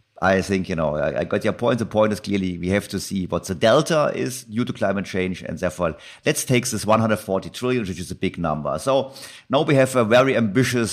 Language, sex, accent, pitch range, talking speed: German, male, German, 90-110 Hz, 235 wpm